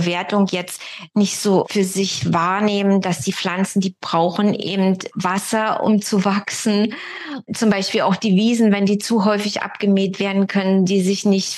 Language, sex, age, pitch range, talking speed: German, female, 20-39, 175-200 Hz, 165 wpm